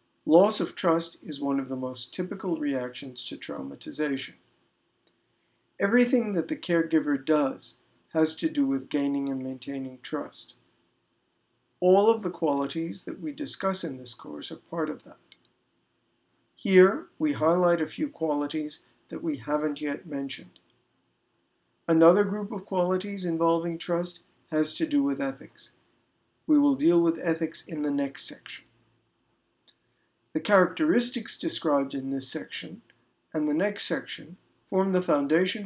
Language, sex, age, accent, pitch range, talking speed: English, male, 60-79, American, 140-195 Hz, 140 wpm